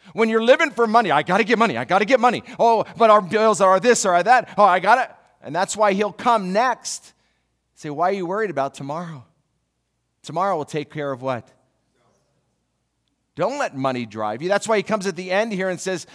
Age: 50-69